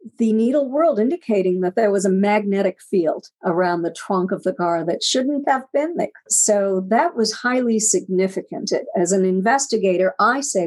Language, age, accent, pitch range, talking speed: English, 50-69, American, 185-235 Hz, 175 wpm